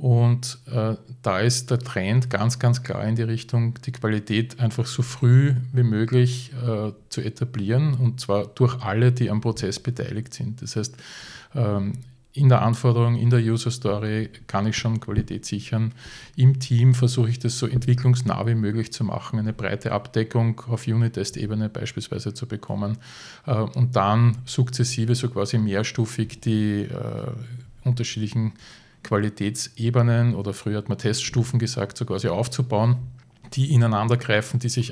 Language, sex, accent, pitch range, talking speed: German, male, Austrian, 110-125 Hz, 150 wpm